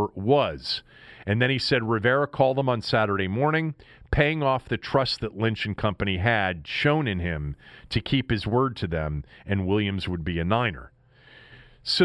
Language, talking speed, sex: English, 180 wpm, male